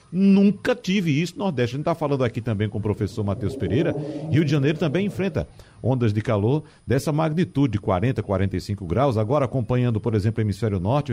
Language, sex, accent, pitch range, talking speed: Portuguese, male, Brazilian, 110-180 Hz, 195 wpm